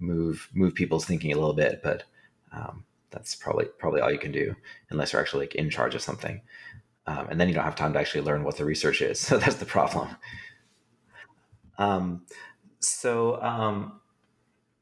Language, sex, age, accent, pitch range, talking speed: English, male, 30-49, American, 80-105 Hz, 180 wpm